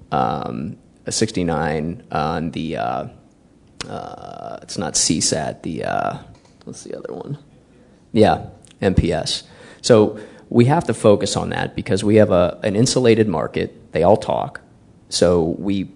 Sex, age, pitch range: male, 20-39, 90-110 Hz